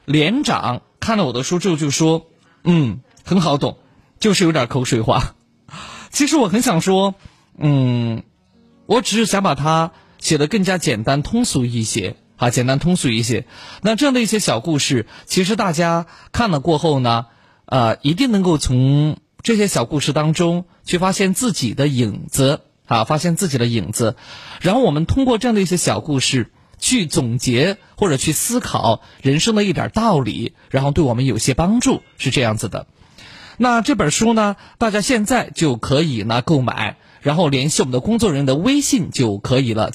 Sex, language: male, Chinese